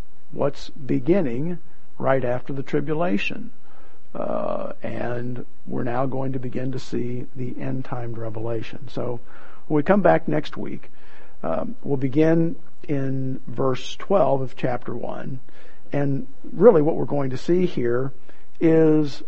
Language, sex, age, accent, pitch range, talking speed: English, male, 50-69, American, 130-160 Hz, 135 wpm